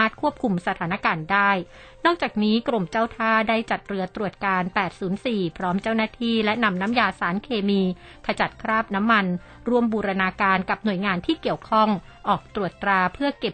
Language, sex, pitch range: Thai, female, 190-230 Hz